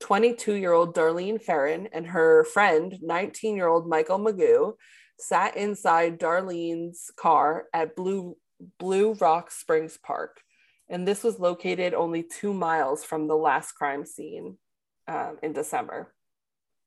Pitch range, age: 160-205 Hz, 20-39